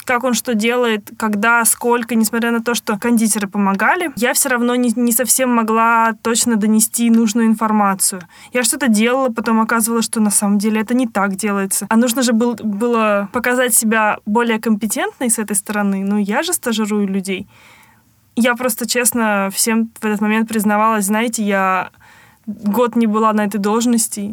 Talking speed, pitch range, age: 170 wpm, 210-240 Hz, 20-39